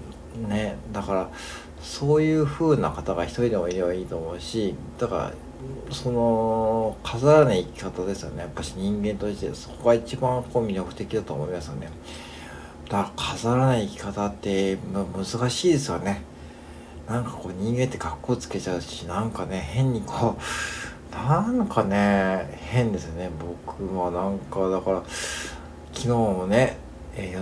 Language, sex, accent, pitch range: Japanese, male, native, 90-125 Hz